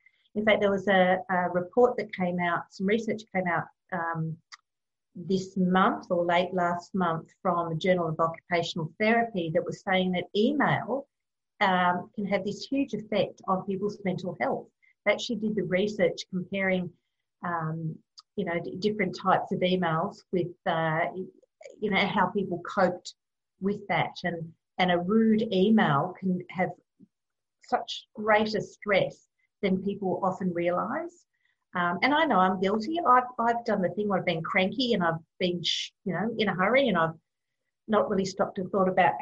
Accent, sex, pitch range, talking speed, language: Australian, female, 175-205 Hz, 170 wpm, English